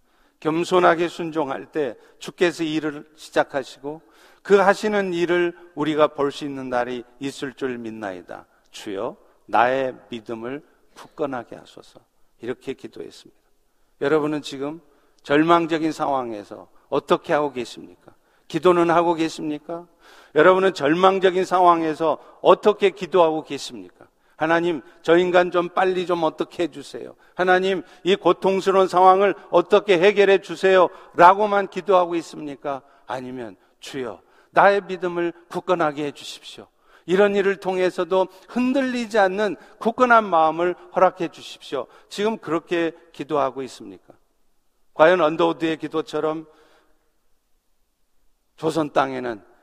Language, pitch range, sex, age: Korean, 150-185 Hz, male, 50-69